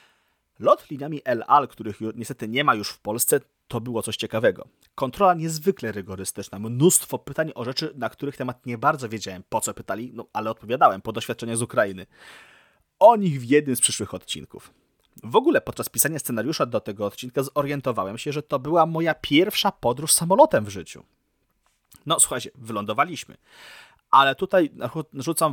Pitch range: 110-145 Hz